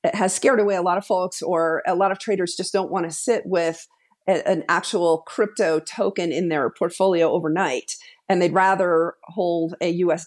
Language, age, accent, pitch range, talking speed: English, 50-69, American, 170-205 Hz, 195 wpm